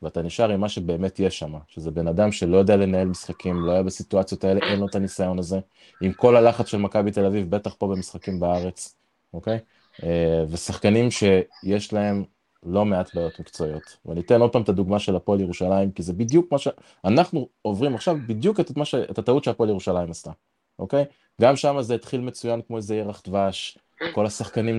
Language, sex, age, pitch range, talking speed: Hebrew, male, 20-39, 95-120 Hz, 190 wpm